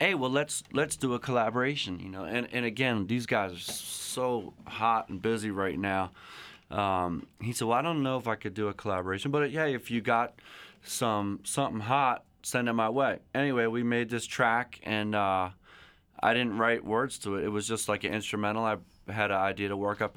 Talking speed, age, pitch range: 215 wpm, 30-49, 100-115 Hz